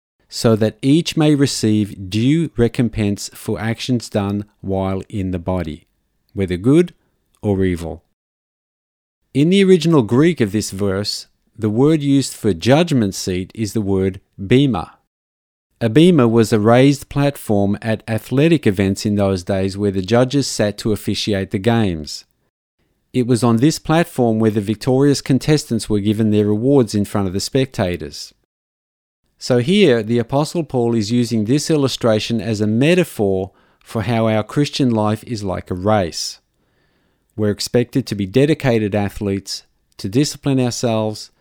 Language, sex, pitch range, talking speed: English, male, 100-130 Hz, 150 wpm